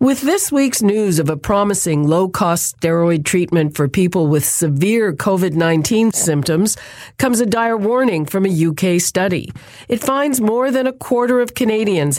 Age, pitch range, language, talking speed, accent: 50-69, 155-205 Hz, English, 160 wpm, American